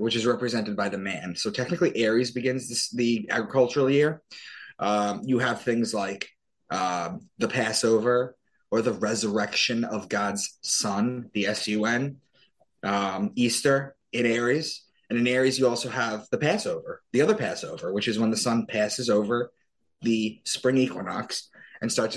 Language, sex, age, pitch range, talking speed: English, male, 20-39, 105-130 Hz, 150 wpm